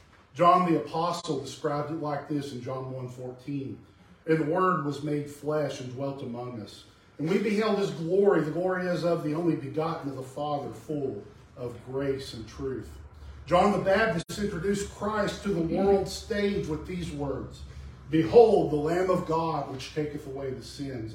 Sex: male